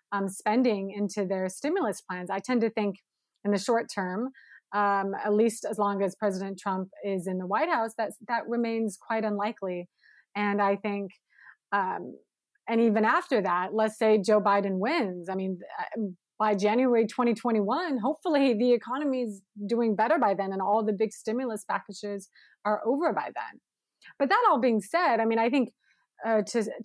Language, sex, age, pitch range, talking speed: English, female, 30-49, 200-250 Hz, 175 wpm